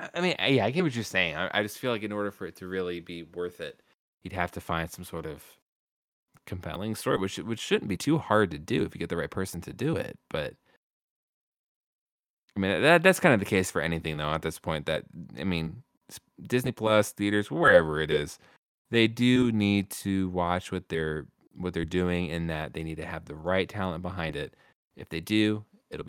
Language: English